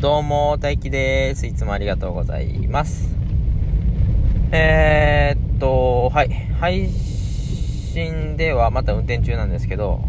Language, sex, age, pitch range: Japanese, male, 20-39, 90-120 Hz